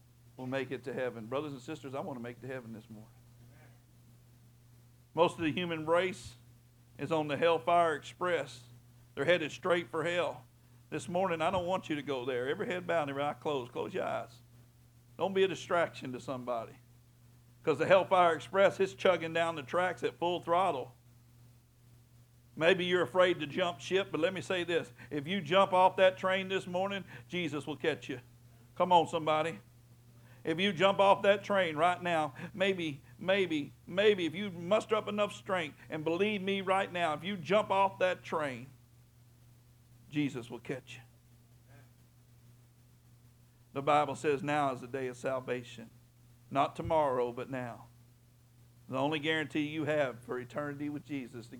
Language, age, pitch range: English, 60-79, 120-170 Hz